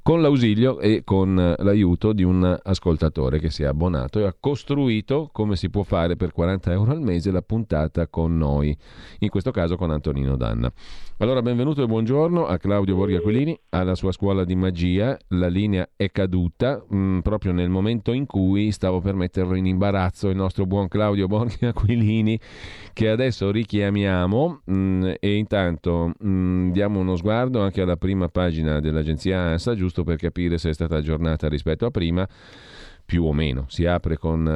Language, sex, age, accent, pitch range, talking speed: Italian, male, 40-59, native, 85-105 Hz, 170 wpm